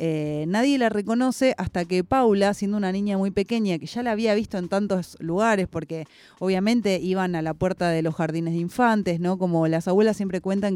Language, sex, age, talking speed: Spanish, female, 20-39, 205 wpm